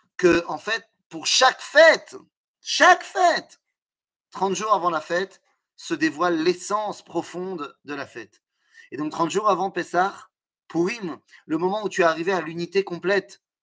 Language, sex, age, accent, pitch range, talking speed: French, male, 30-49, French, 155-210 Hz, 165 wpm